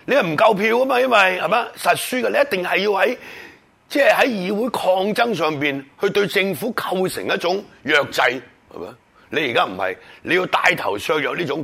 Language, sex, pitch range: Chinese, male, 175-245 Hz